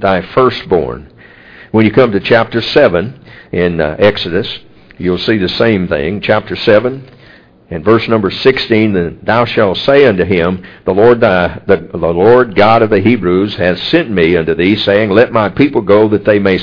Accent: American